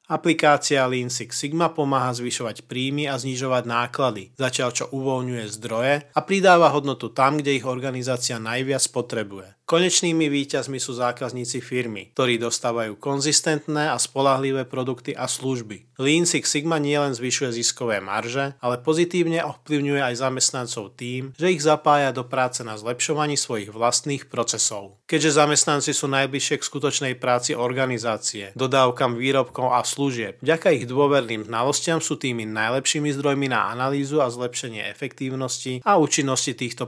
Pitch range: 120-145 Hz